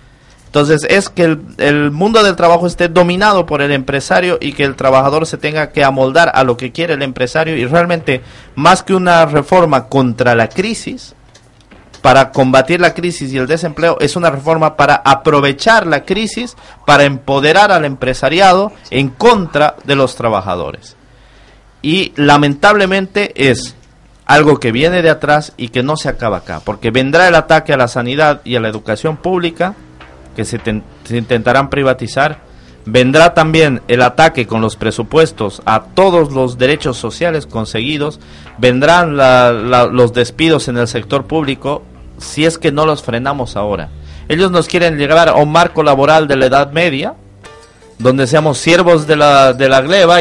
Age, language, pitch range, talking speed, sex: 50-69, Spanish, 125-165 Hz, 165 wpm, male